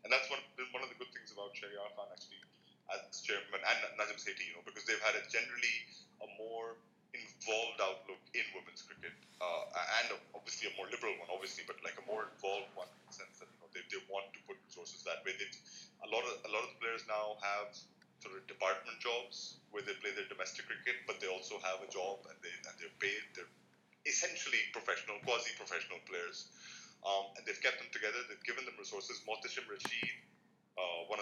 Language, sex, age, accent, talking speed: English, male, 30-49, Indian, 210 wpm